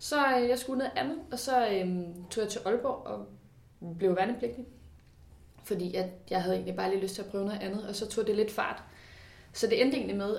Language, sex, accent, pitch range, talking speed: Danish, female, native, 185-230 Hz, 215 wpm